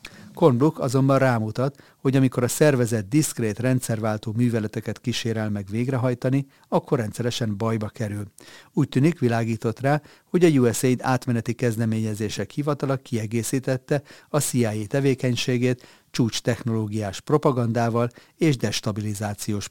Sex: male